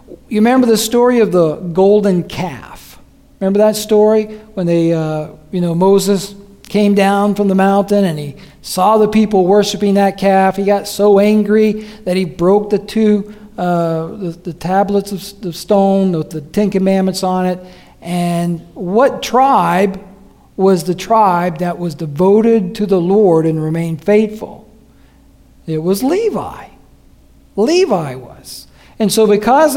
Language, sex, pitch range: English, male, 180-220 Hz